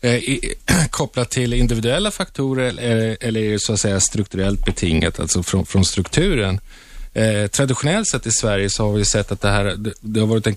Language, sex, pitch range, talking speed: Swedish, male, 105-130 Hz, 165 wpm